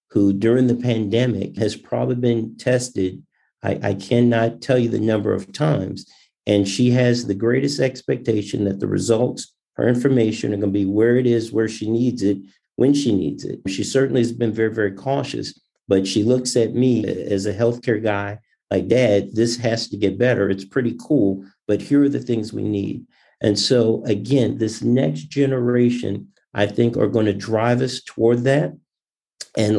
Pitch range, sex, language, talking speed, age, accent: 105-125 Hz, male, English, 185 wpm, 50-69, American